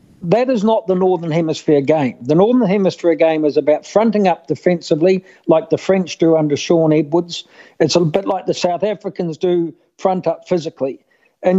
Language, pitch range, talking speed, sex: English, 160-195 Hz, 180 wpm, male